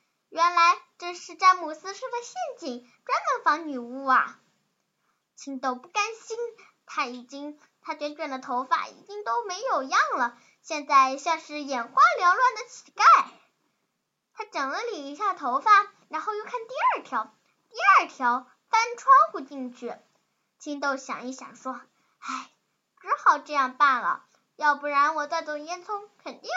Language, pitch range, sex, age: Chinese, 275-370 Hz, female, 10-29